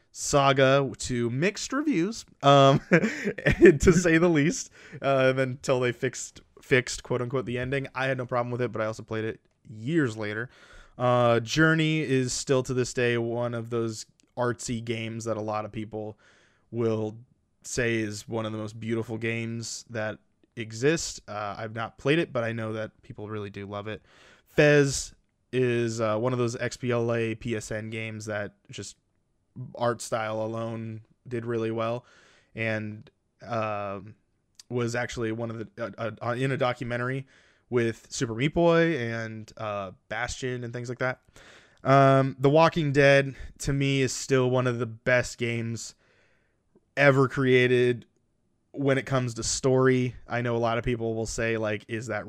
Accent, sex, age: American, male, 20-39